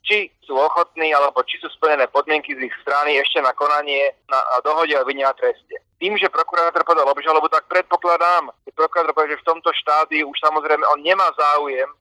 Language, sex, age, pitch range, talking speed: Slovak, male, 30-49, 150-190 Hz, 190 wpm